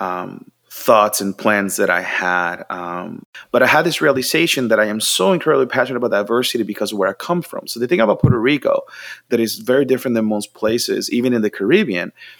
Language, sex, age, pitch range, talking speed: English, male, 30-49, 110-130 Hz, 215 wpm